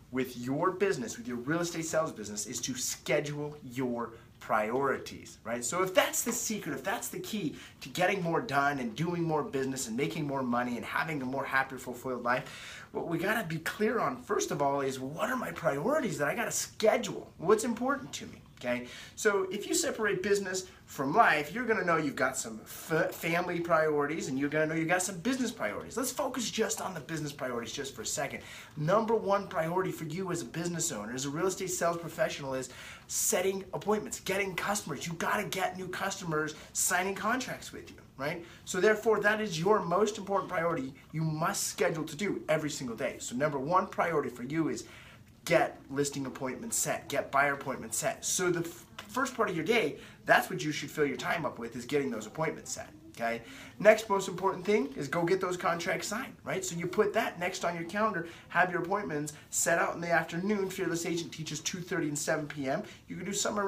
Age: 30-49